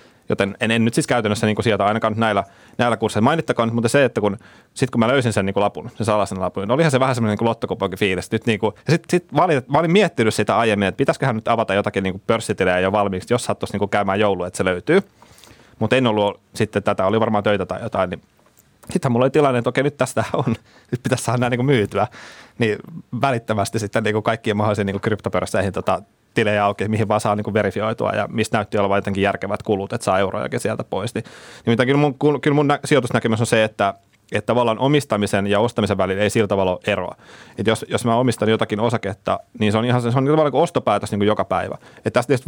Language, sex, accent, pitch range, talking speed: Finnish, male, native, 100-120 Hz, 235 wpm